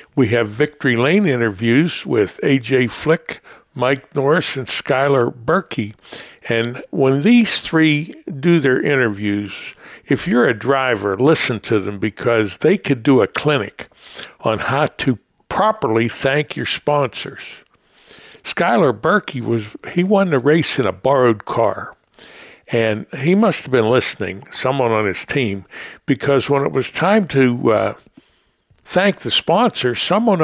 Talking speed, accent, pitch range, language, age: 140 wpm, American, 120-160 Hz, English, 60-79